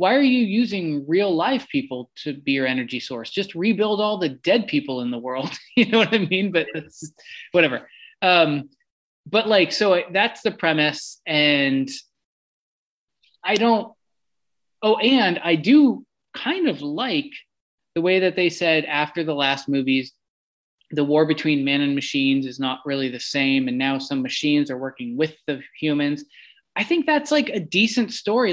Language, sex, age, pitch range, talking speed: English, male, 20-39, 145-215 Hz, 175 wpm